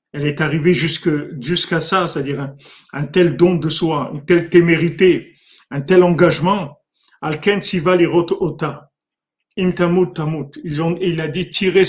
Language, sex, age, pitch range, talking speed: French, male, 50-69, 155-175 Hz, 140 wpm